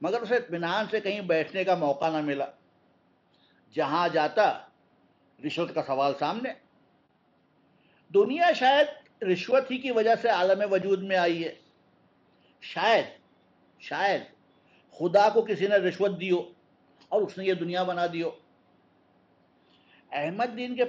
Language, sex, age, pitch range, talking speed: Urdu, male, 60-79, 180-245 Hz, 130 wpm